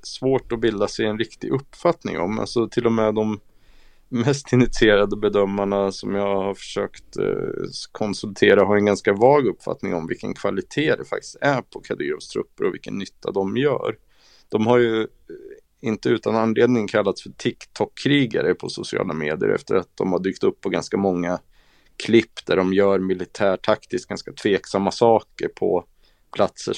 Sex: male